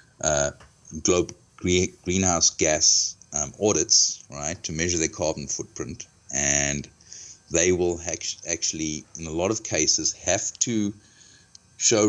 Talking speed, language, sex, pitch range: 125 wpm, English, male, 85-105 Hz